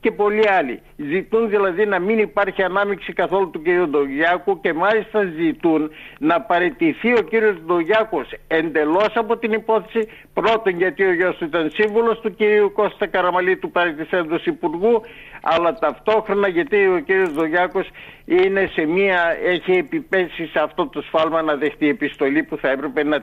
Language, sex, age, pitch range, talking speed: Greek, male, 60-79, 165-220 Hz, 150 wpm